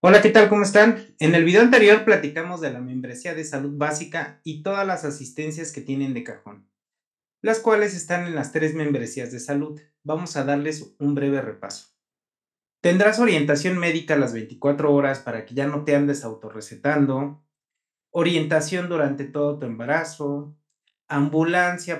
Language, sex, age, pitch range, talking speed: Spanish, male, 30-49, 135-170 Hz, 160 wpm